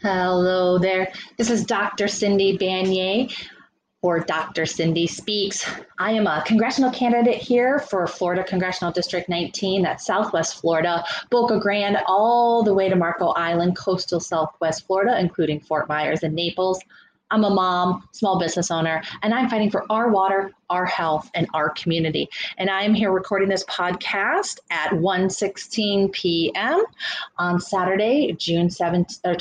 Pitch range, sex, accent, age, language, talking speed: 170-205 Hz, female, American, 30-49, English, 150 wpm